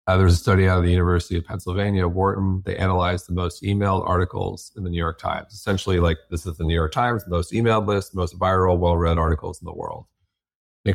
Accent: American